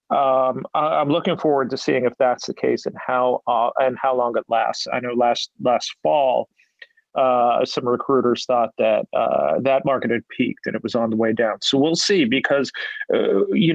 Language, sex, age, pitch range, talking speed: English, male, 40-59, 125-155 Hz, 200 wpm